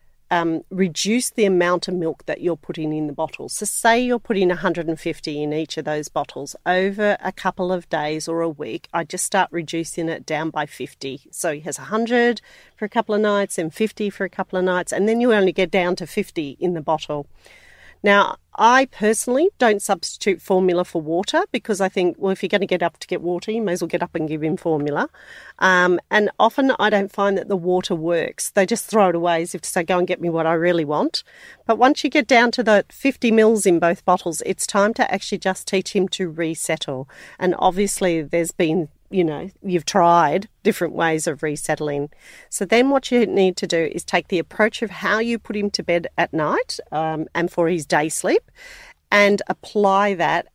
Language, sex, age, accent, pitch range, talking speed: English, female, 40-59, Australian, 165-210 Hz, 220 wpm